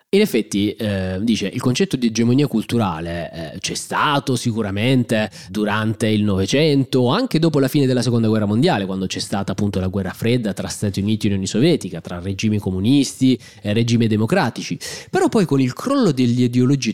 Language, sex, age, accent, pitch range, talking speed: Italian, male, 20-39, native, 110-140 Hz, 175 wpm